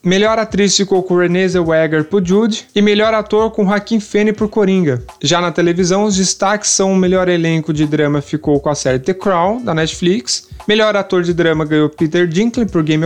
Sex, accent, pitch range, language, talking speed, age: male, Brazilian, 175-210 Hz, Portuguese, 200 wpm, 20-39